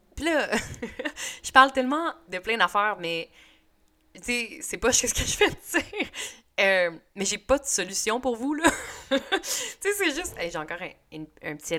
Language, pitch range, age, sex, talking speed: French, 160-230 Hz, 20-39, female, 195 wpm